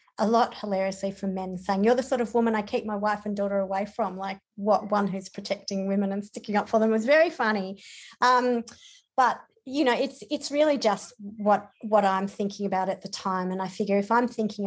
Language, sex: English, female